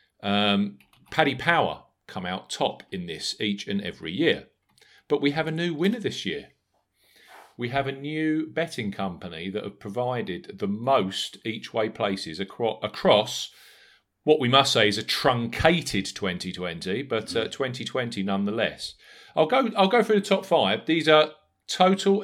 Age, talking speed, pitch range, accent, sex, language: 40-59, 160 wpm, 100-150 Hz, British, male, English